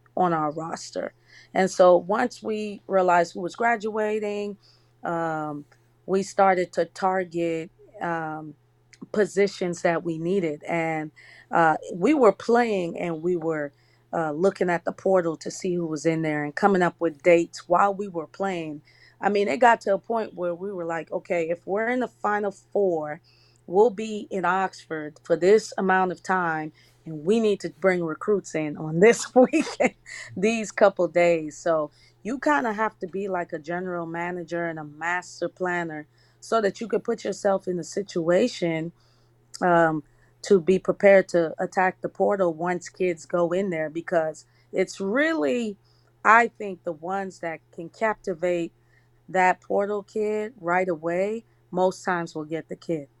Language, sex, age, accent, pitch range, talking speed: English, female, 30-49, American, 160-200 Hz, 165 wpm